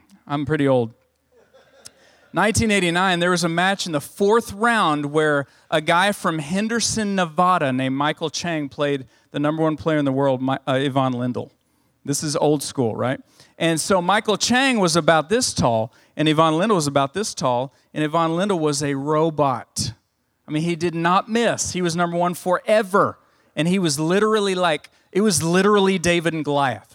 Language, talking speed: English, 180 wpm